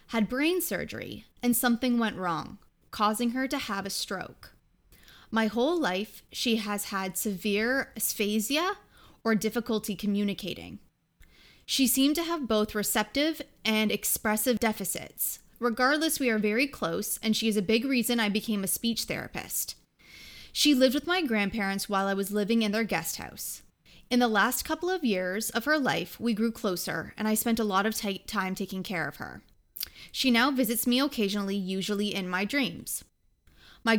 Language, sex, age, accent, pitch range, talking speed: English, female, 20-39, American, 200-245 Hz, 170 wpm